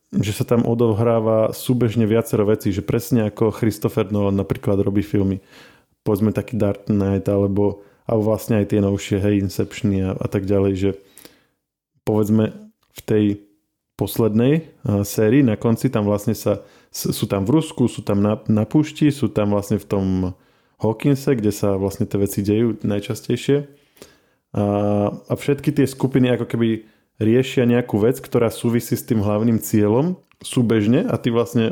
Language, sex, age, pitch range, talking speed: Slovak, male, 20-39, 105-120 Hz, 160 wpm